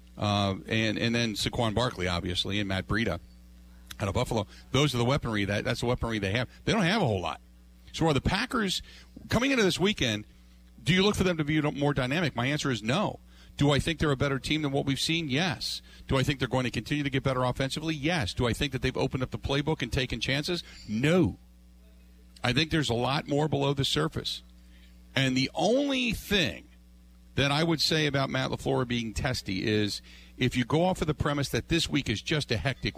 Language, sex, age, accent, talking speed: English, male, 50-69, American, 225 wpm